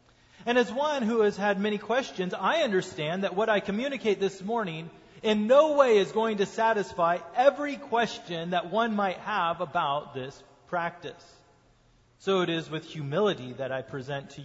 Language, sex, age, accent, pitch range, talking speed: English, male, 30-49, American, 135-200 Hz, 170 wpm